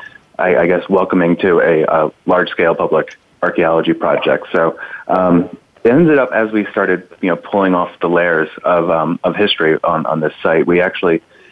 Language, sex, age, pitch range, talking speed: English, male, 30-49, 85-100 Hz, 180 wpm